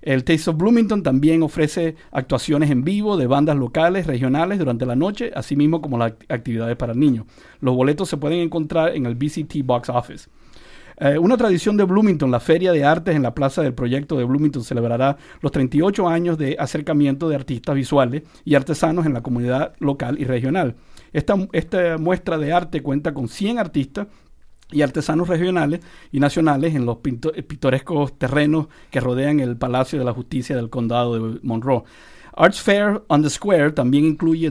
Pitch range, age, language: 130-165 Hz, 50-69, English